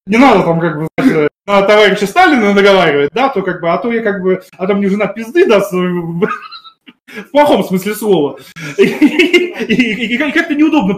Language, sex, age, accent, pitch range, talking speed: Russian, male, 20-39, native, 180-250 Hz, 185 wpm